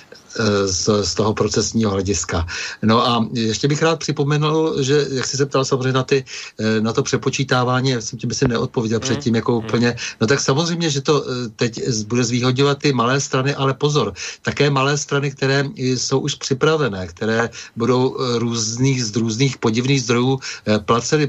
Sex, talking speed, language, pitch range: male, 165 wpm, Slovak, 110-130 Hz